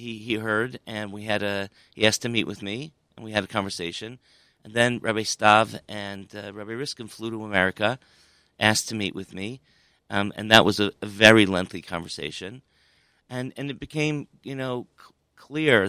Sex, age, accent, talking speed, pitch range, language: male, 40-59, American, 195 wpm, 100-115 Hz, English